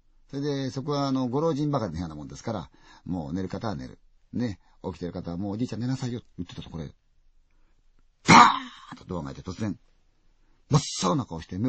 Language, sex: Chinese, male